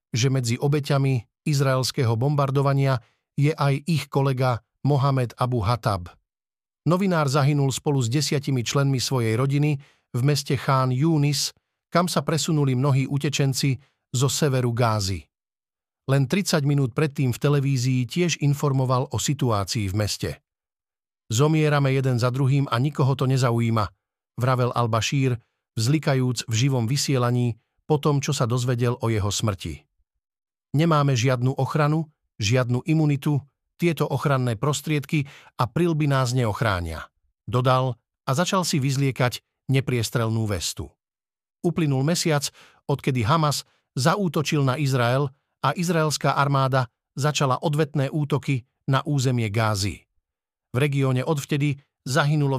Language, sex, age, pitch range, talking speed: Slovak, male, 50-69, 125-150 Hz, 120 wpm